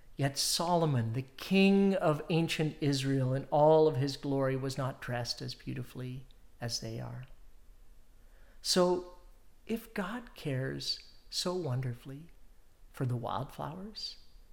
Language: English